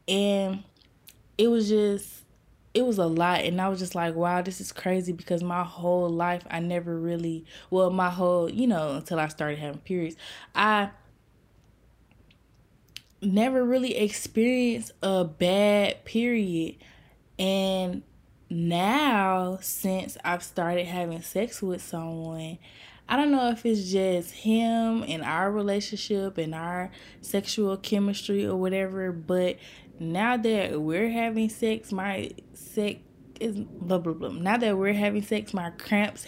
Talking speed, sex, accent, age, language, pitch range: 140 wpm, female, American, 20-39, English, 170-200 Hz